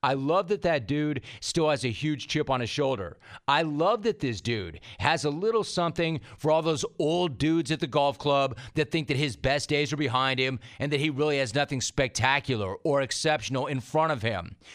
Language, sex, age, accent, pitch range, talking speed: English, male, 40-59, American, 130-160 Hz, 215 wpm